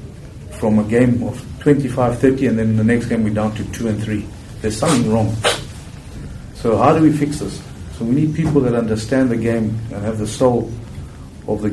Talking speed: 205 wpm